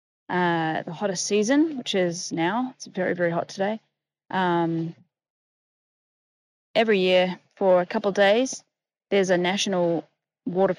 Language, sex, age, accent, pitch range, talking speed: English, female, 20-39, Australian, 175-215 Hz, 135 wpm